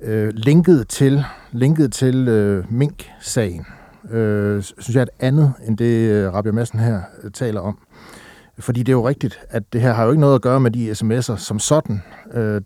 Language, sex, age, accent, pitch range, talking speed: Danish, male, 60-79, native, 110-130 Hz, 195 wpm